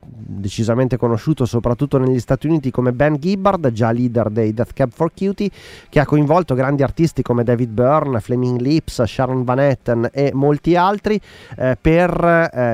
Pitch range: 120-150 Hz